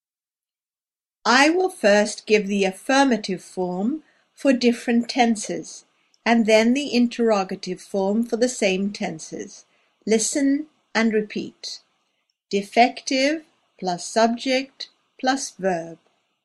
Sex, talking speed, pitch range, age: female, 100 wpm, 200-260 Hz, 50-69